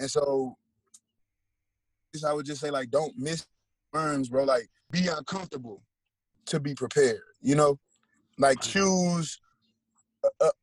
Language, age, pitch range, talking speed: English, 20-39, 135-170 Hz, 125 wpm